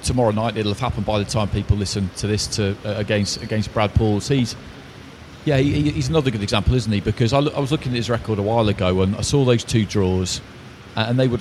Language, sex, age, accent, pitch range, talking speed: English, male, 40-59, British, 100-125 Hz, 260 wpm